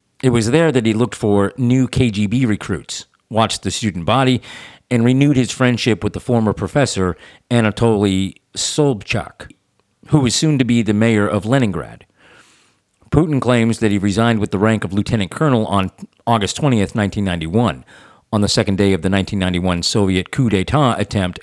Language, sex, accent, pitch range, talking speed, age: English, male, American, 100-125 Hz, 165 wpm, 50-69